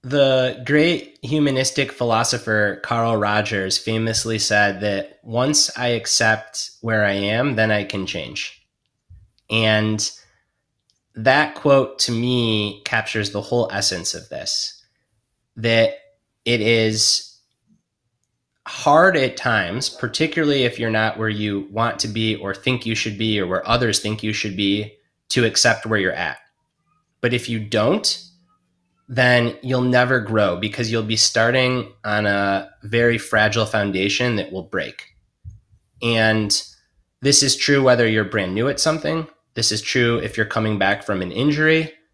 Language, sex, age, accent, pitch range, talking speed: English, male, 20-39, American, 105-125 Hz, 145 wpm